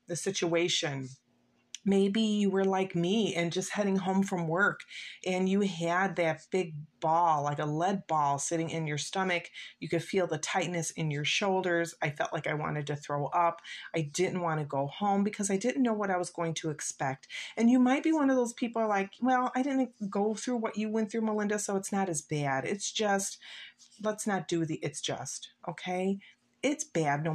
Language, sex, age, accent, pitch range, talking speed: English, female, 30-49, American, 170-215 Hz, 210 wpm